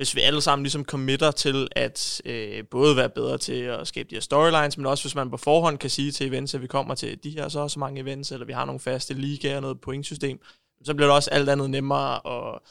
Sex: male